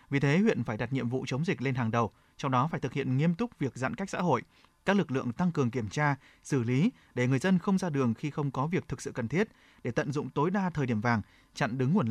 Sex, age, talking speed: male, 20-39, 290 wpm